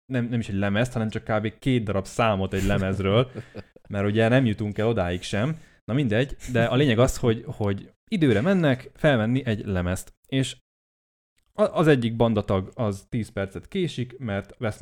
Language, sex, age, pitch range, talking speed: Hungarian, male, 20-39, 95-130 Hz, 175 wpm